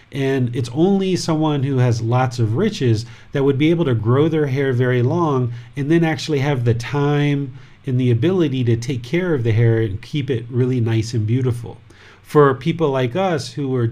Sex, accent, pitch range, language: male, American, 120-140 Hz, English